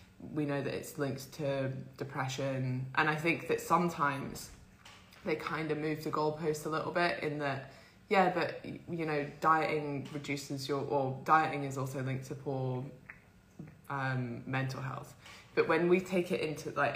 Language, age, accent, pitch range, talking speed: English, 20-39, British, 135-155 Hz, 165 wpm